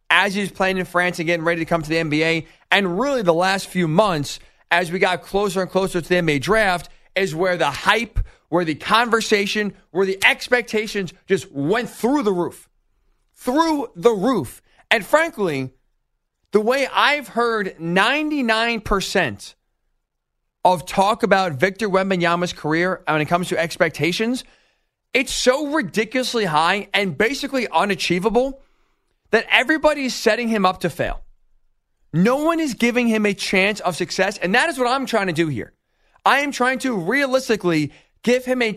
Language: English